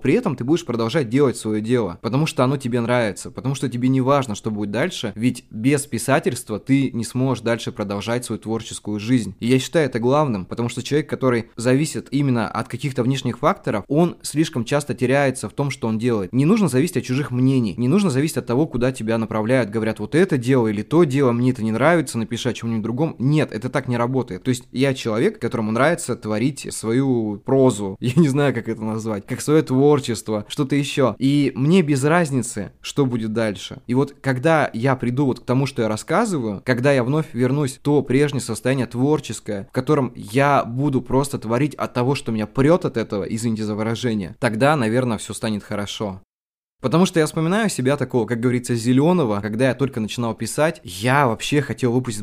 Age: 20-39